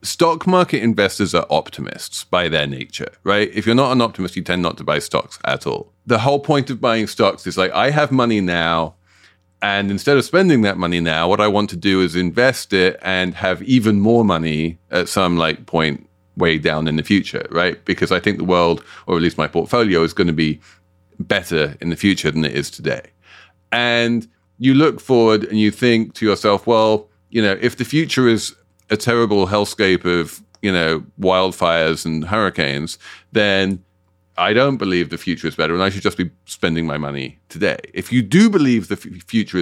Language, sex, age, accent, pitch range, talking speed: English, male, 30-49, British, 90-115 Hz, 205 wpm